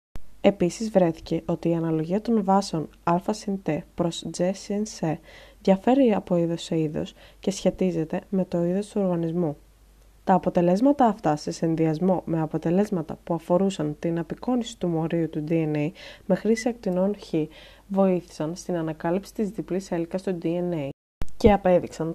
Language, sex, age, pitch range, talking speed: Greek, female, 20-39, 165-200 Hz, 140 wpm